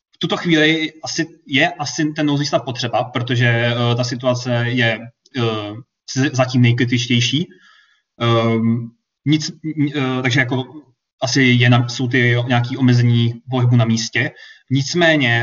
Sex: male